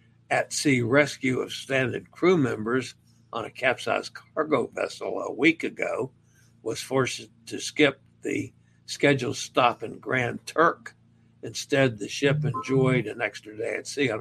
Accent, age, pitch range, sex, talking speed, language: American, 60-79, 120-140 Hz, male, 150 wpm, English